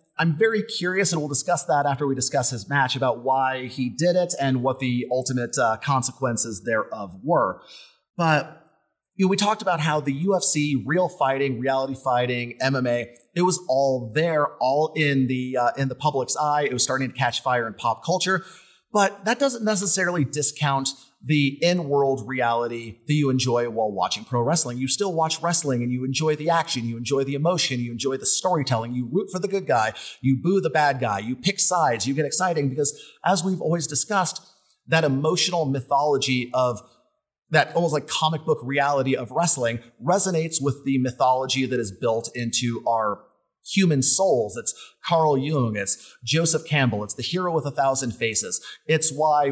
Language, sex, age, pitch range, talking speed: English, male, 30-49, 130-160 Hz, 180 wpm